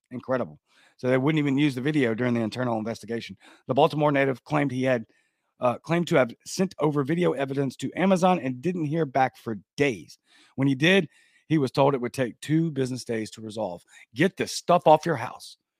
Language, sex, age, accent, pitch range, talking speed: English, male, 40-59, American, 130-185 Hz, 205 wpm